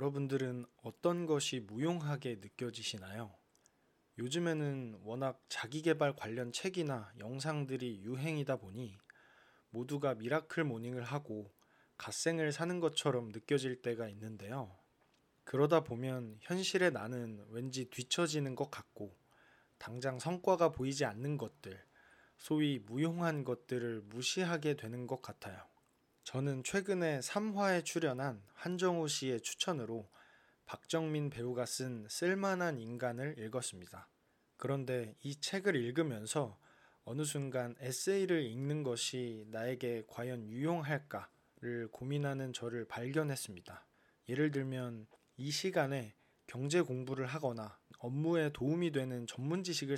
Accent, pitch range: native, 120-150 Hz